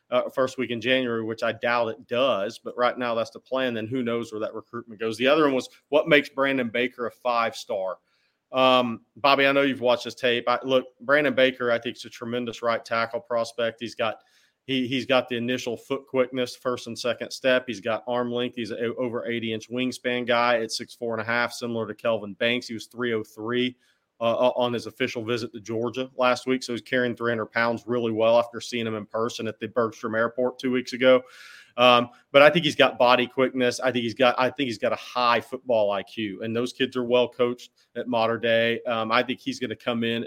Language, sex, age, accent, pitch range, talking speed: English, male, 40-59, American, 115-125 Hz, 230 wpm